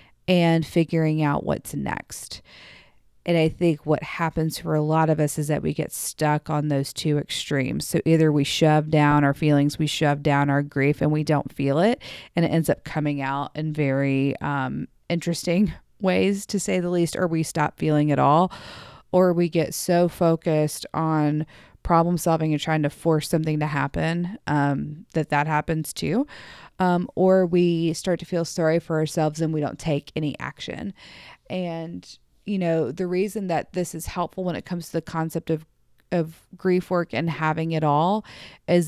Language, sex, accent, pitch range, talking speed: English, female, American, 150-175 Hz, 185 wpm